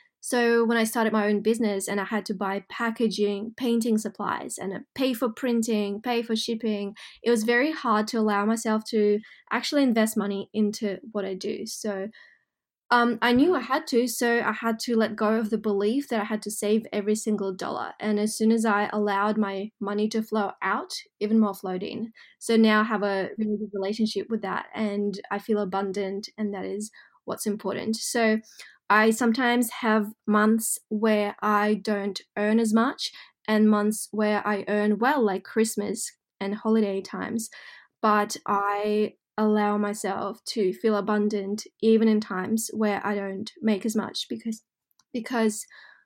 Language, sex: English, female